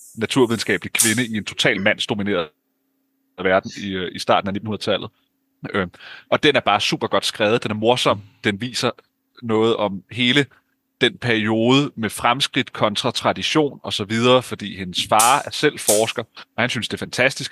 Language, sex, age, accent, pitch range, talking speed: Danish, male, 30-49, native, 110-145 Hz, 160 wpm